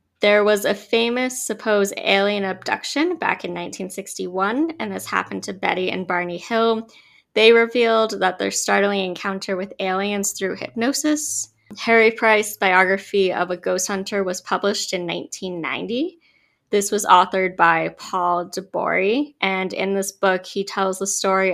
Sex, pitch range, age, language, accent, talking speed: female, 180-225 Hz, 20-39, English, American, 150 wpm